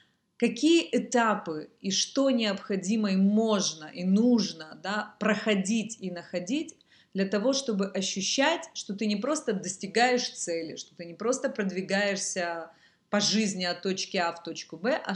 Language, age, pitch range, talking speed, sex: Russian, 30-49, 180-225 Hz, 145 wpm, female